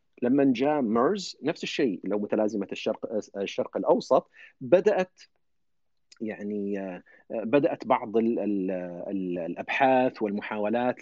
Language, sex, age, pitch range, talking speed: Arabic, male, 40-59, 110-155 Hz, 85 wpm